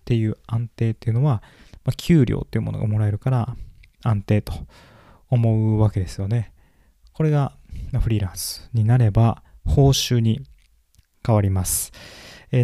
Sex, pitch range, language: male, 100-130 Hz, Japanese